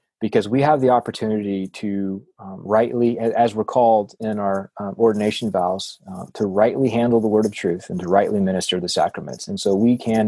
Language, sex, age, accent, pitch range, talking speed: English, male, 30-49, American, 100-120 Hz, 205 wpm